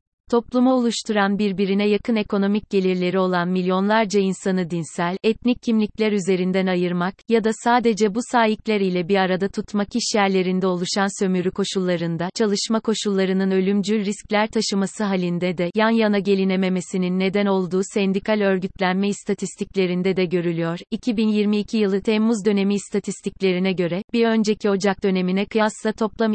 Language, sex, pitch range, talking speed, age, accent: Turkish, female, 190-220 Hz, 125 wpm, 30-49, native